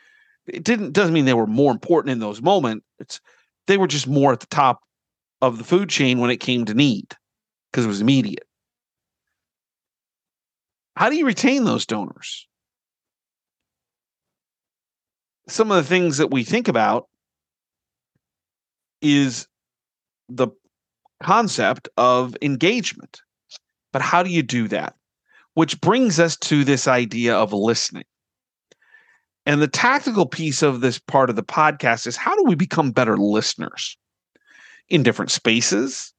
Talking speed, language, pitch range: 140 wpm, English, 125-180 Hz